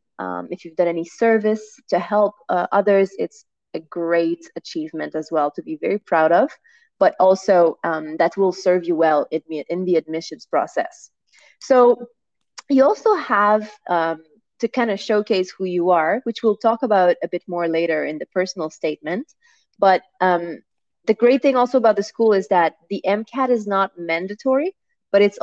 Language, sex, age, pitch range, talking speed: English, female, 20-39, 170-220 Hz, 175 wpm